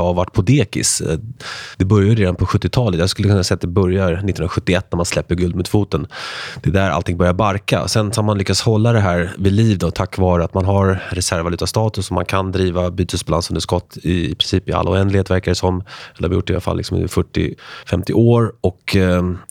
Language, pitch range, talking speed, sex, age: Swedish, 90-105 Hz, 230 wpm, male, 20-39